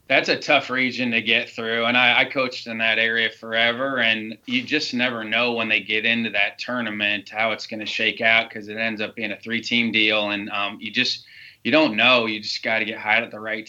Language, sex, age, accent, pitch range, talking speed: English, male, 20-39, American, 105-120 Hz, 250 wpm